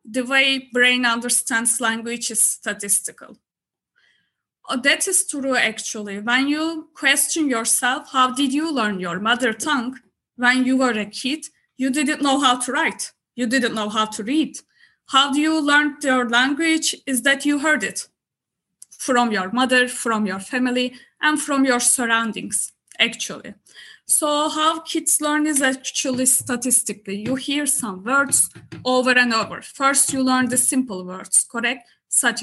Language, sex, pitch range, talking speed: English, female, 240-285 Hz, 155 wpm